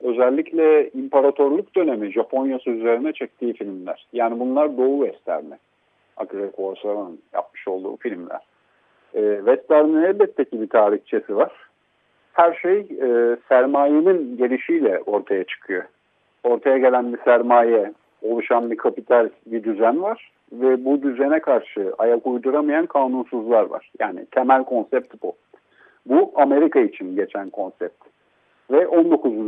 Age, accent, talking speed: 50-69, native, 115 wpm